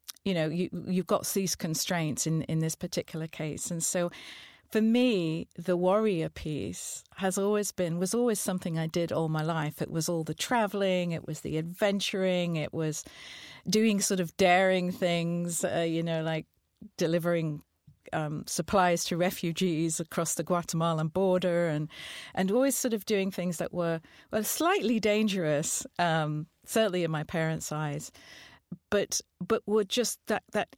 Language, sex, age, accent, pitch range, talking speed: English, female, 50-69, British, 165-200 Hz, 165 wpm